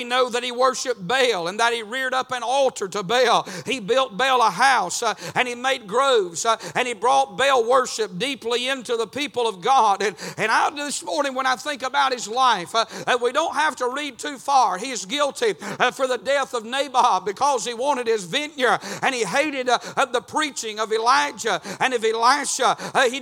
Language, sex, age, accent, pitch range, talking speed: English, male, 50-69, American, 245-295 Hz, 215 wpm